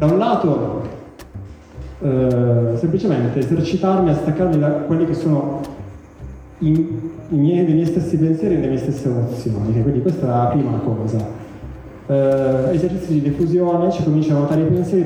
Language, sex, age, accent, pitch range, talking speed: Italian, male, 20-39, native, 125-160 Hz, 150 wpm